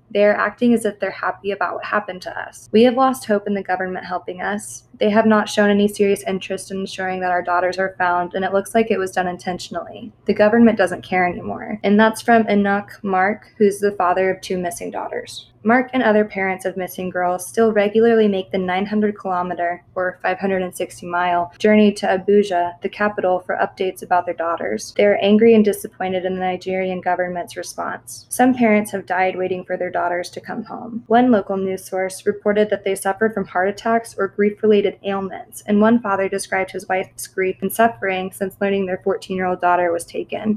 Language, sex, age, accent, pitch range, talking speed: English, female, 20-39, American, 185-210 Hz, 205 wpm